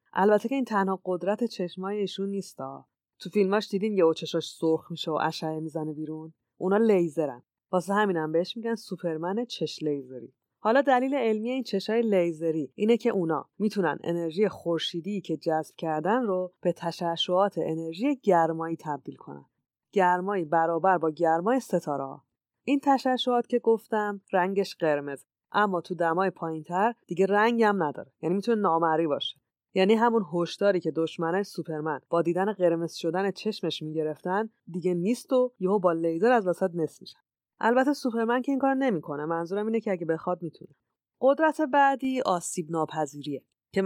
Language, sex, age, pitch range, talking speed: Persian, female, 20-39, 165-215 Hz, 150 wpm